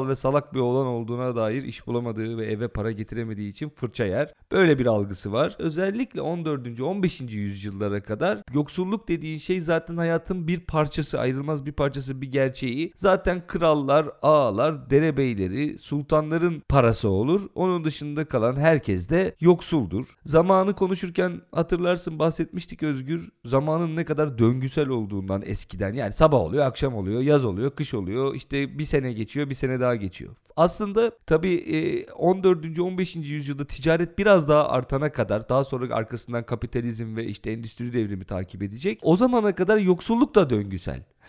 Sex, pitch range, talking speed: male, 120-175 Hz, 150 wpm